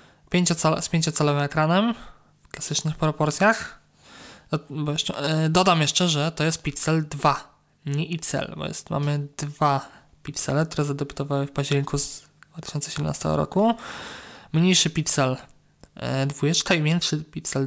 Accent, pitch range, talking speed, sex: native, 145-170 Hz, 110 wpm, male